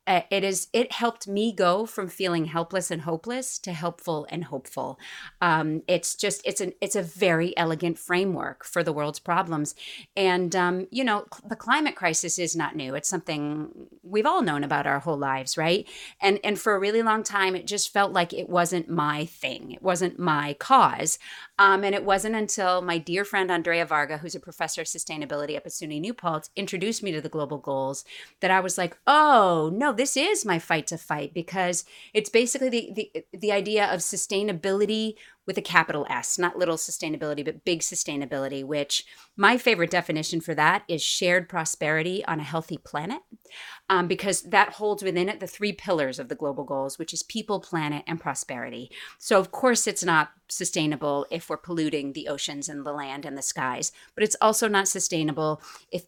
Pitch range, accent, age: 155-200 Hz, American, 30-49